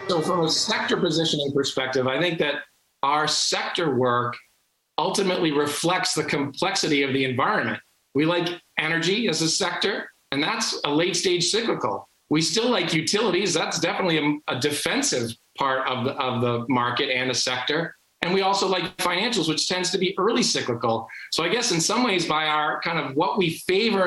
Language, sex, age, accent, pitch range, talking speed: English, male, 40-59, American, 140-175 Hz, 180 wpm